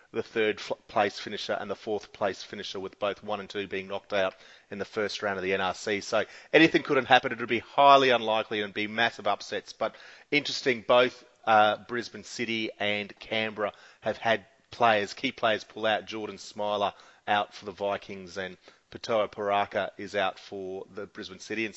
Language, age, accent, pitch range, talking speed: English, 30-49, Australian, 100-120 Hz, 185 wpm